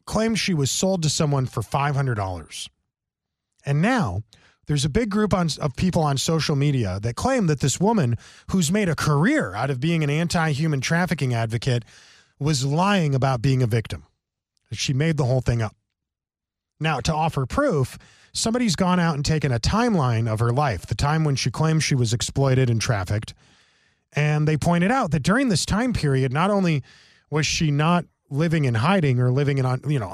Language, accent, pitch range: English, American, 125-165 Hz